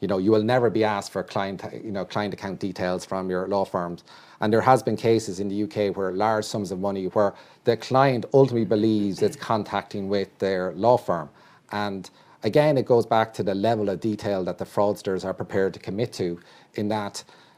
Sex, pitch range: male, 100-125 Hz